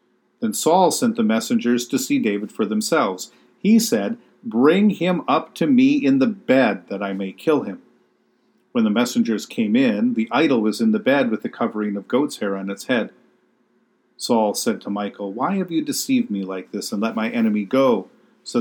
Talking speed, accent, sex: 200 wpm, American, male